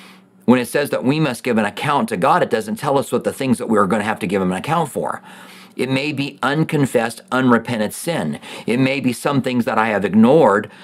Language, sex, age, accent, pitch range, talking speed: English, male, 40-59, American, 125-195 Hz, 250 wpm